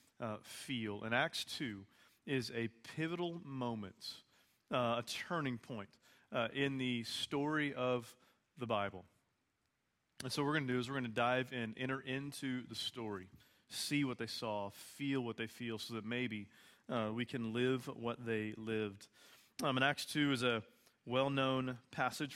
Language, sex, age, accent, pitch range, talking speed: English, male, 40-59, American, 115-130 Hz, 170 wpm